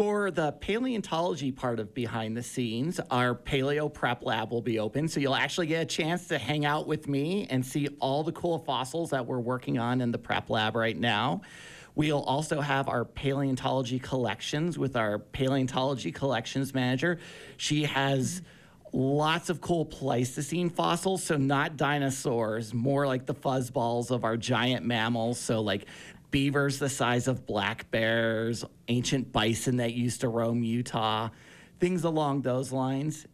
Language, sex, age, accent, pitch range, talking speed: English, male, 40-59, American, 125-155 Hz, 160 wpm